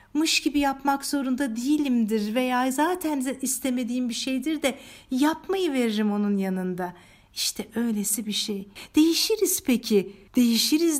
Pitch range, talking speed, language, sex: 220-270 Hz, 120 wpm, Turkish, female